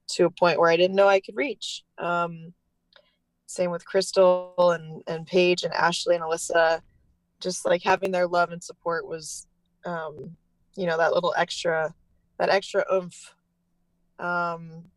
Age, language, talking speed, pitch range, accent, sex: 20-39, English, 155 wpm, 165-185 Hz, American, female